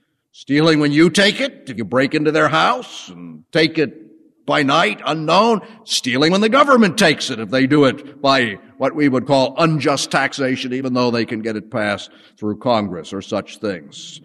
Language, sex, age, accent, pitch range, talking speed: English, male, 50-69, American, 130-200 Hz, 195 wpm